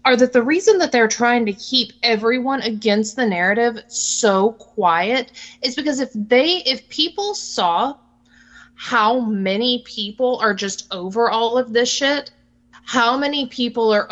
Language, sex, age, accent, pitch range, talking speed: English, female, 20-39, American, 195-245 Hz, 155 wpm